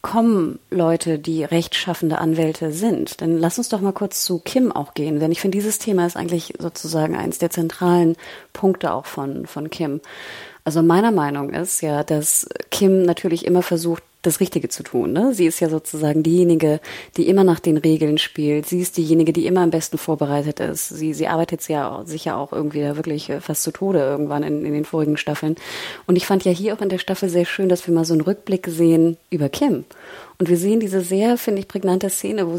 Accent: German